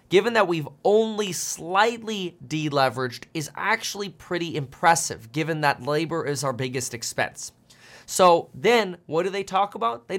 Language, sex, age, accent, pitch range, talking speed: English, male, 20-39, American, 130-180 Hz, 145 wpm